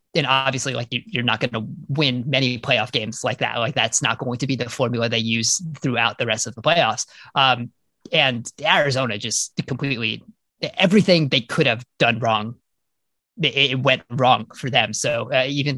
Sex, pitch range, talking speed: male, 125-155 Hz, 185 wpm